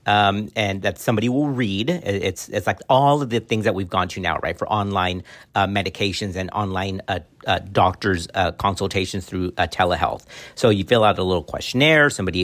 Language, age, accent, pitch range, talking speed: English, 50-69, American, 95-120 Hz, 200 wpm